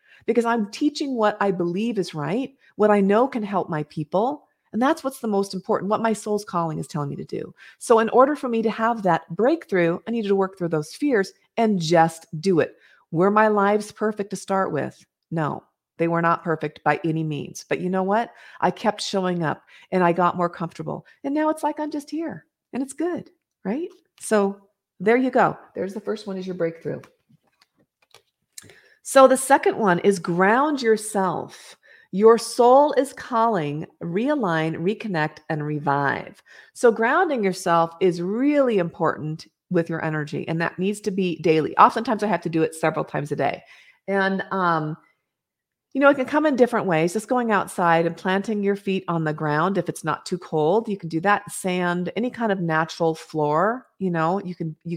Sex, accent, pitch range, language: female, American, 165-225 Hz, English